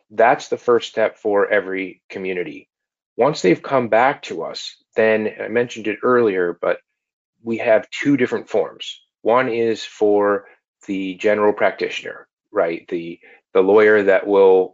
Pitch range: 95-130 Hz